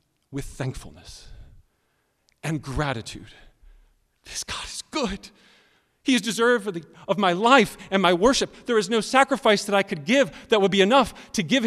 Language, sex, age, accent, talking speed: English, male, 40-59, American, 160 wpm